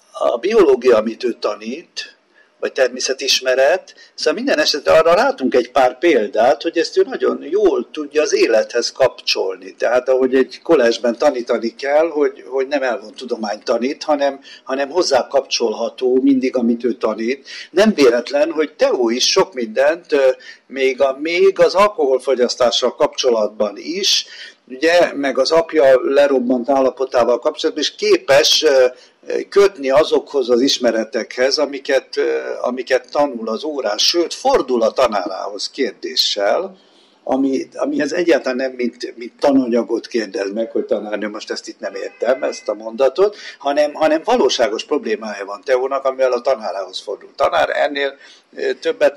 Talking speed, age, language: 140 wpm, 60-79, Hungarian